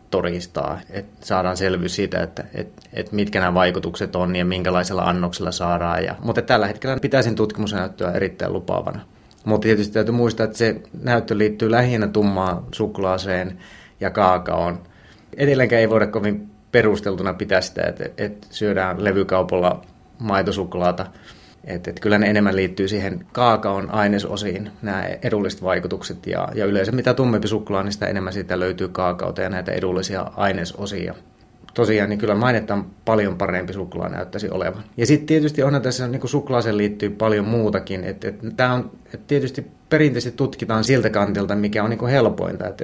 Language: Finnish